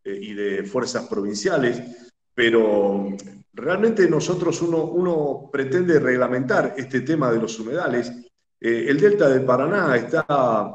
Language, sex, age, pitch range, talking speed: Spanish, male, 50-69, 115-160 Hz, 125 wpm